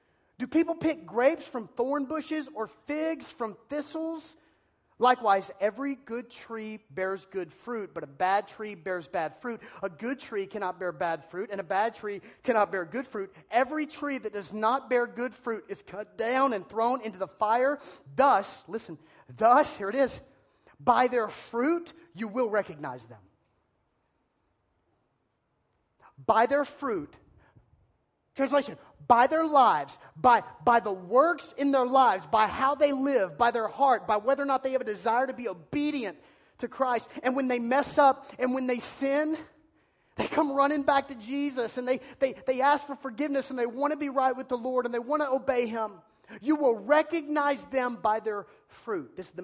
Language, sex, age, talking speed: English, male, 30-49, 180 wpm